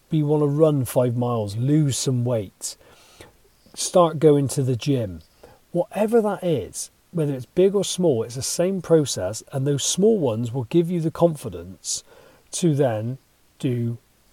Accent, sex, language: British, male, English